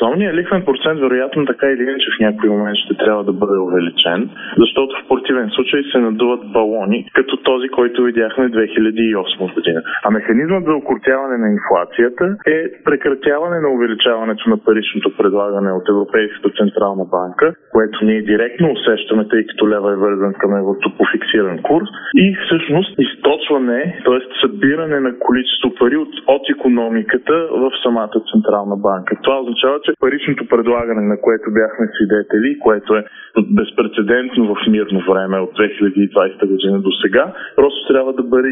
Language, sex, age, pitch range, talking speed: Bulgarian, male, 20-39, 105-140 Hz, 155 wpm